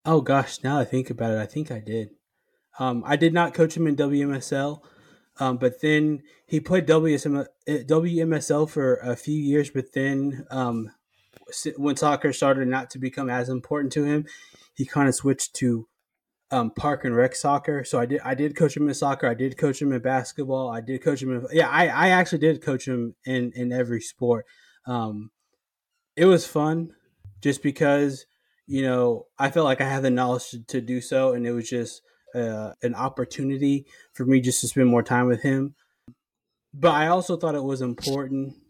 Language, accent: English, American